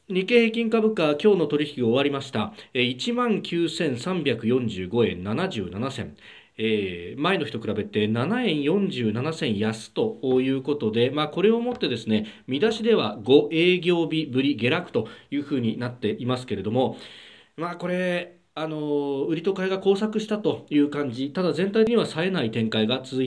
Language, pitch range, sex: Japanese, 115-170 Hz, male